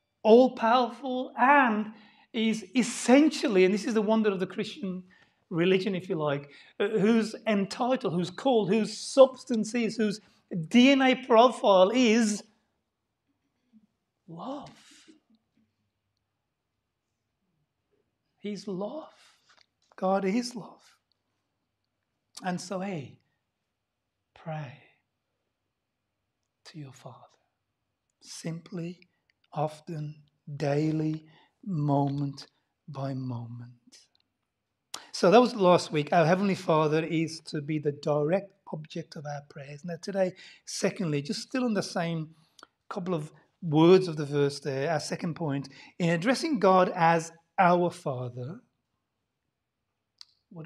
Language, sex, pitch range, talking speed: English, male, 145-215 Hz, 105 wpm